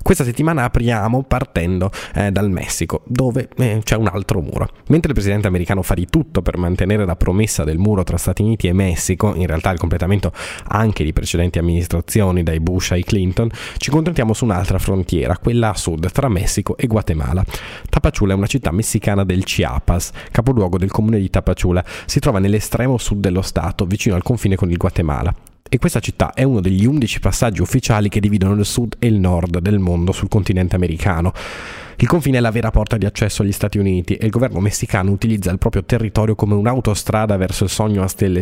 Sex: male